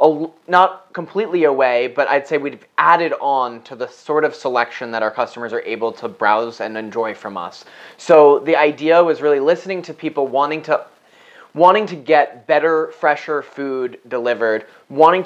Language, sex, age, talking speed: English, male, 20-39, 175 wpm